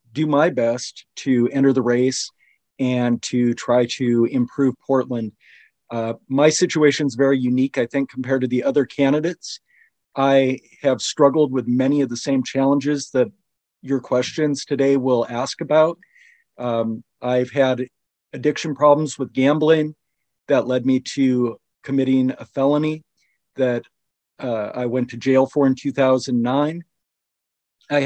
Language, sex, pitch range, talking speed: English, male, 125-145 Hz, 140 wpm